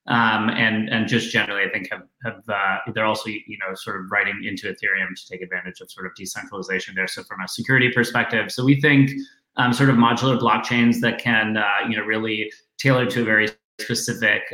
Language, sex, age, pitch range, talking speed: English, male, 30-49, 100-120 Hz, 210 wpm